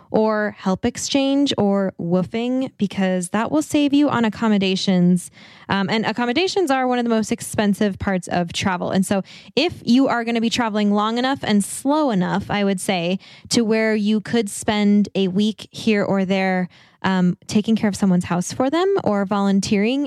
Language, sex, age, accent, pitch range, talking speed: English, female, 10-29, American, 190-220 Hz, 180 wpm